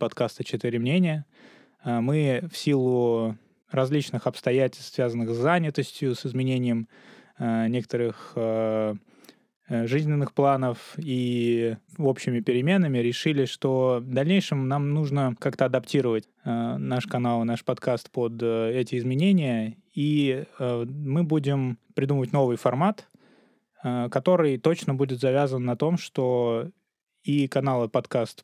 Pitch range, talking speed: 120-150 Hz, 110 wpm